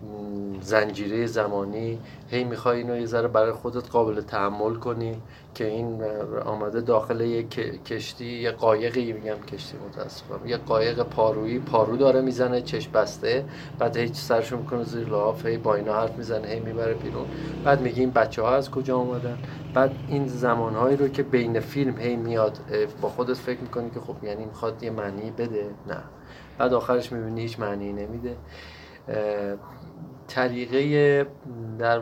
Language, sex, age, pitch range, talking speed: Persian, male, 30-49, 115-130 Hz, 160 wpm